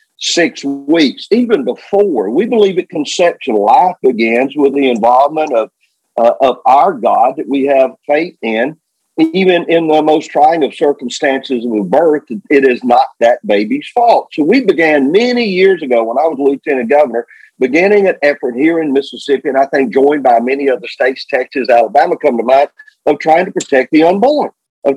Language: English